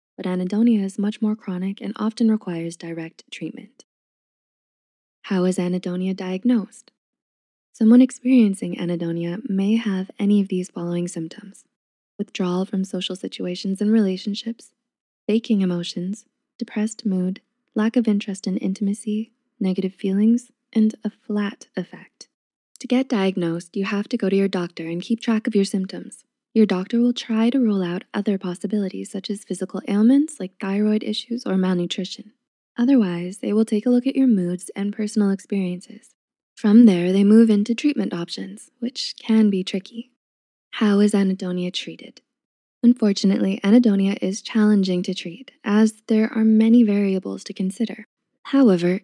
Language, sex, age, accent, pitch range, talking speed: English, female, 20-39, American, 190-230 Hz, 150 wpm